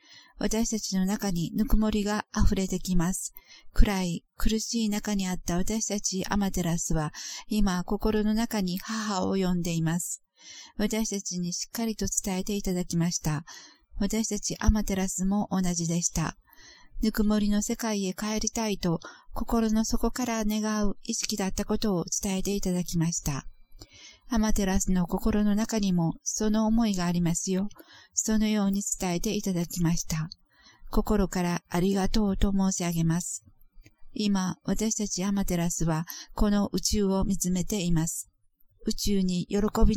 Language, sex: Japanese, female